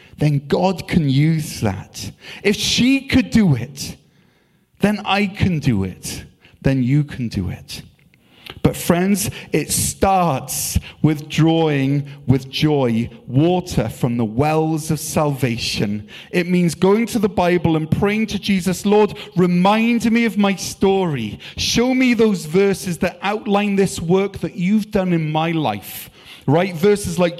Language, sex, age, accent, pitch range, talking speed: English, male, 30-49, British, 150-195 Hz, 145 wpm